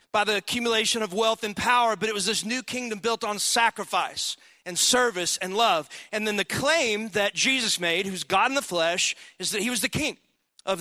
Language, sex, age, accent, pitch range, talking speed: English, male, 40-59, American, 190-235 Hz, 215 wpm